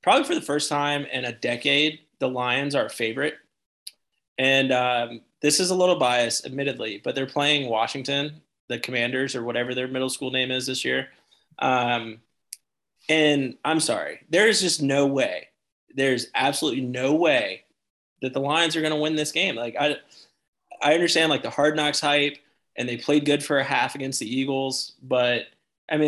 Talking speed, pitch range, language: 185 wpm, 120-145 Hz, English